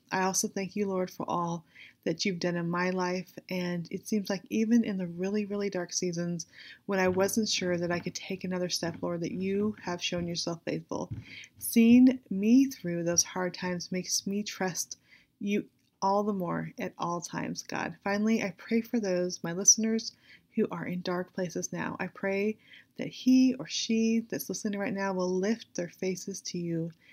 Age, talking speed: 30-49, 195 wpm